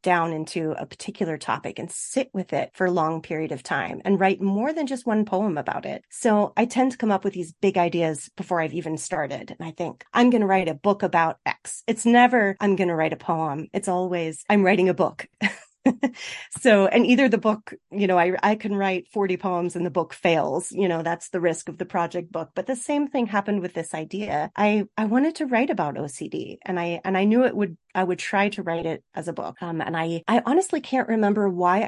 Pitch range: 175-210 Hz